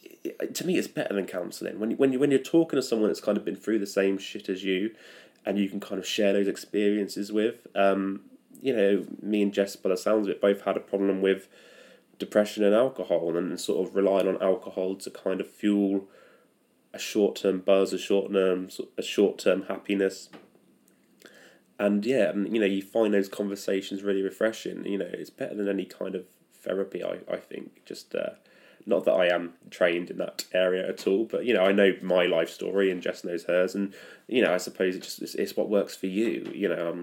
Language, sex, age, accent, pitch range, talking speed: English, male, 20-39, British, 95-105 Hz, 215 wpm